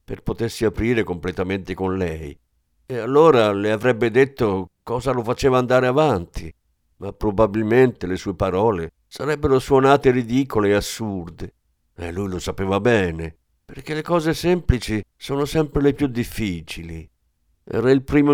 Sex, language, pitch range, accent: male, Italian, 85-120 Hz, native